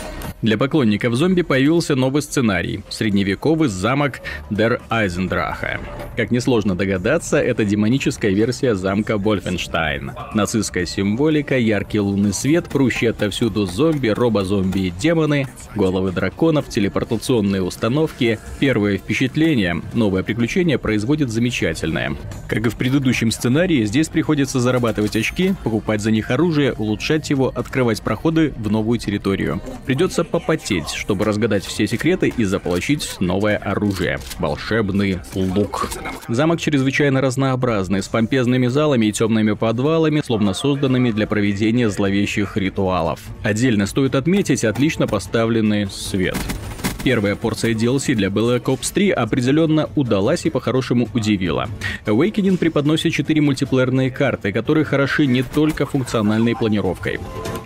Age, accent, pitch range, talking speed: 30-49, native, 105-140 Hz, 120 wpm